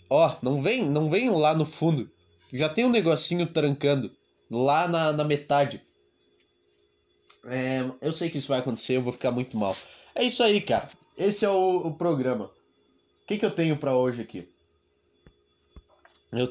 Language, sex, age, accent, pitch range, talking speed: Portuguese, male, 20-39, Brazilian, 145-180 Hz, 175 wpm